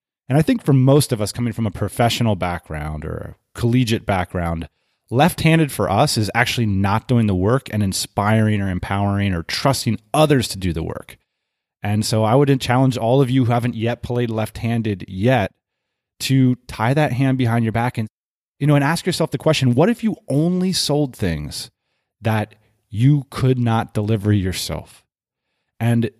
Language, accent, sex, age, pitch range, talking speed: English, American, male, 30-49, 100-140 Hz, 180 wpm